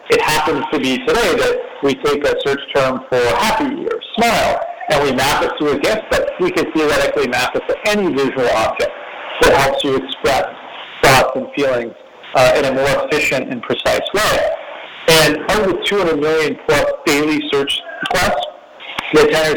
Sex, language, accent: male, English, American